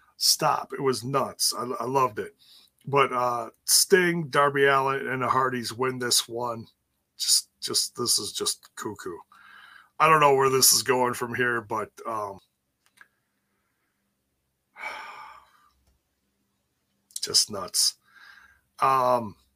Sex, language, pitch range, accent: male, English, 120-155 Hz, American